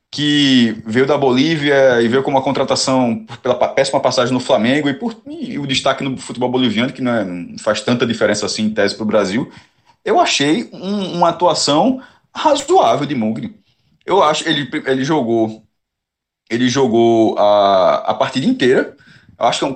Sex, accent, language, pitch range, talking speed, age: male, Brazilian, Portuguese, 125-200 Hz, 165 wpm, 20-39